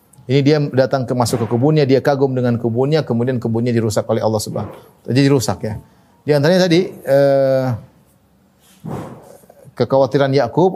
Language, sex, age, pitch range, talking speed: Indonesian, male, 30-49, 115-155 Hz, 145 wpm